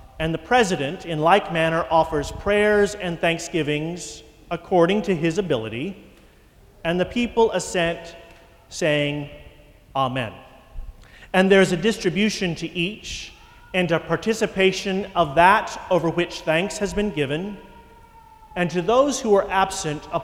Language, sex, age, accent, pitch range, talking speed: English, male, 40-59, American, 160-205 Hz, 130 wpm